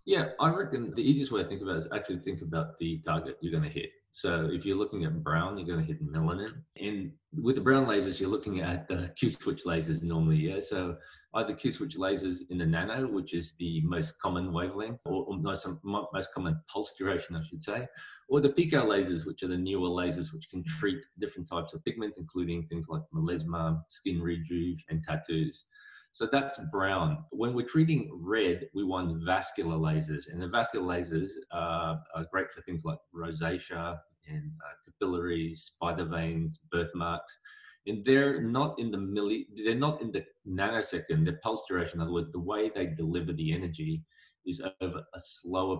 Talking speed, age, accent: 190 wpm, 20-39, Australian